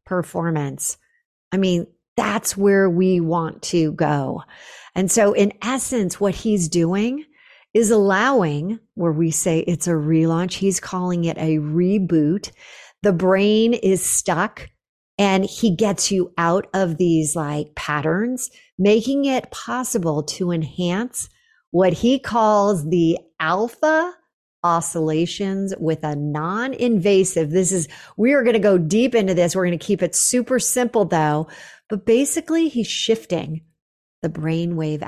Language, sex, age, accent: English, female, 50-69, American